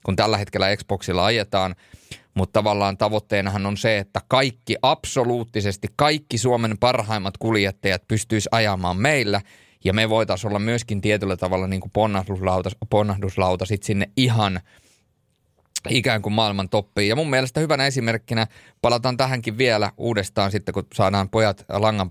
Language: Finnish